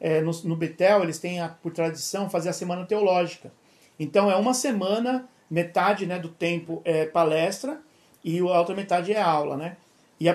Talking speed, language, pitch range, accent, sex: 185 wpm, Portuguese, 165-205 Hz, Brazilian, male